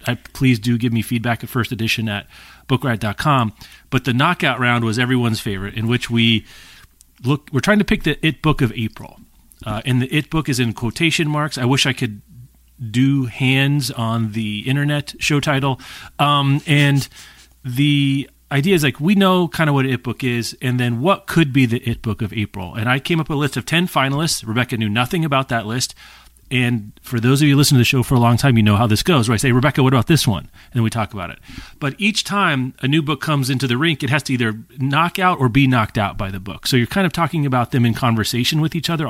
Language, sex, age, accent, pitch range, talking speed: English, male, 30-49, American, 115-155 Hz, 245 wpm